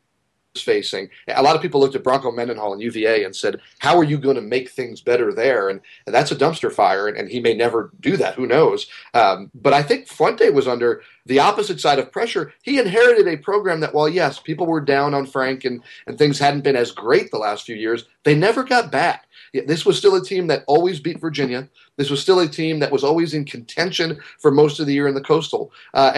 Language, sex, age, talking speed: English, male, 30-49, 235 wpm